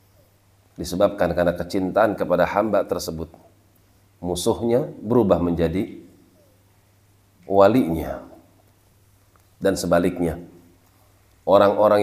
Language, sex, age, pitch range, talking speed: Indonesian, male, 40-59, 85-100 Hz, 65 wpm